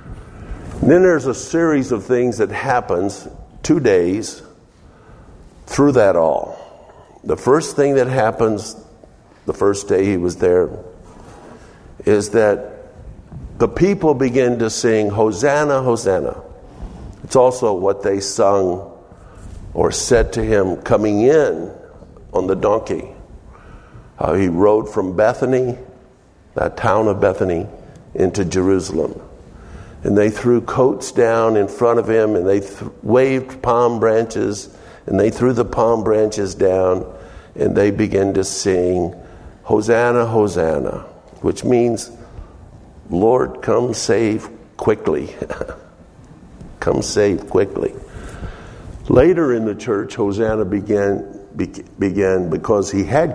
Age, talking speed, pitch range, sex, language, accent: 50-69, 120 wpm, 95-120 Hz, male, English, American